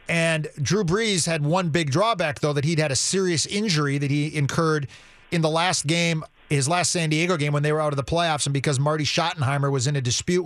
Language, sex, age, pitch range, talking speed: English, male, 40-59, 140-165 Hz, 235 wpm